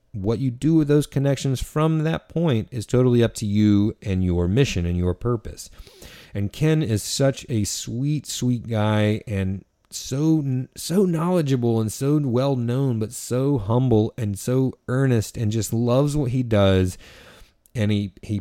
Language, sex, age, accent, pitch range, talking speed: English, male, 30-49, American, 100-125 Hz, 165 wpm